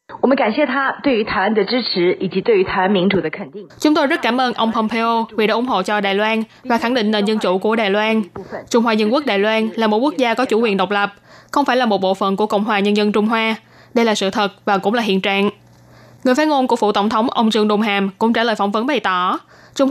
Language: Vietnamese